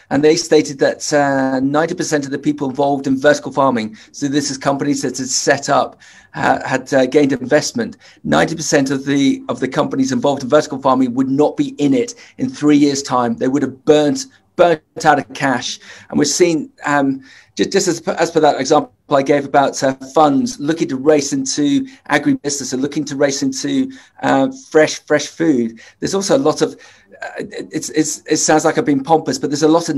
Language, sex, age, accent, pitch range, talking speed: English, male, 40-59, British, 145-175 Hz, 205 wpm